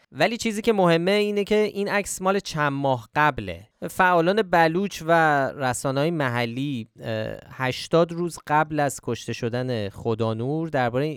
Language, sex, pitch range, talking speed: Persian, male, 110-145 Hz, 135 wpm